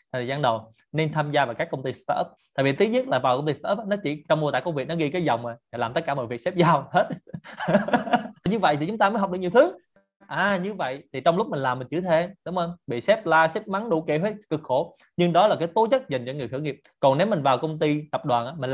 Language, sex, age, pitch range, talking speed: Vietnamese, male, 20-39, 130-180 Hz, 300 wpm